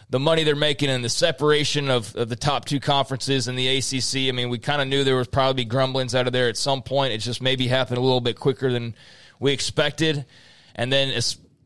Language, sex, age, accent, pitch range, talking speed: English, male, 20-39, American, 120-145 Hz, 240 wpm